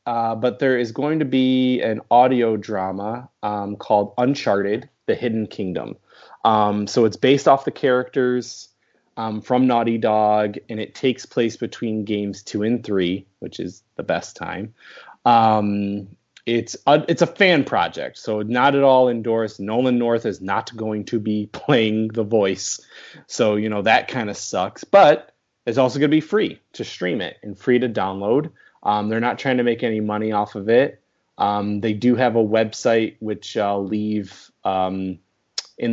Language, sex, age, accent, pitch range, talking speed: English, male, 20-39, American, 105-125 Hz, 175 wpm